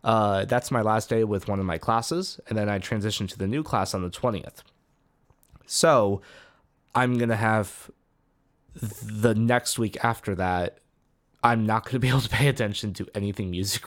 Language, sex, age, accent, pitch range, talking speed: English, male, 20-39, American, 100-125 Hz, 190 wpm